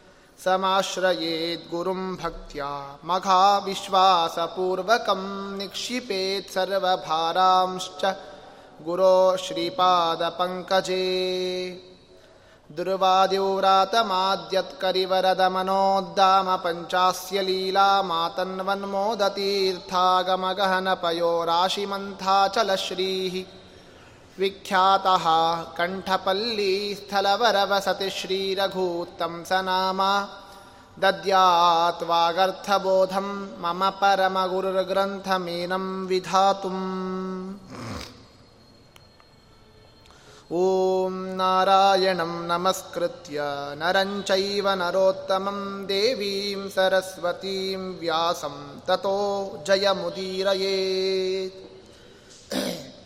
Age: 30-49